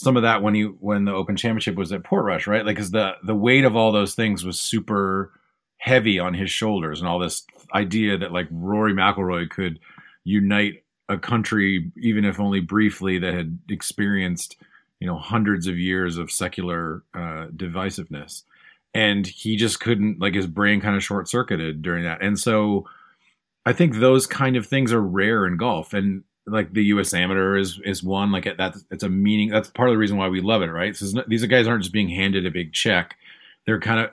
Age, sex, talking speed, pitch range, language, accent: 30-49, male, 210 wpm, 95-110 Hz, English, American